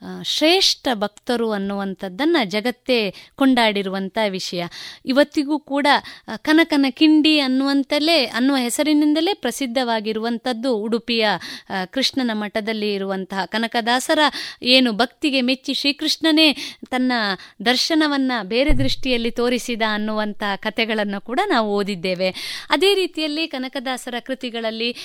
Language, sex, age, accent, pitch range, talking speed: Kannada, female, 20-39, native, 210-280 Hz, 90 wpm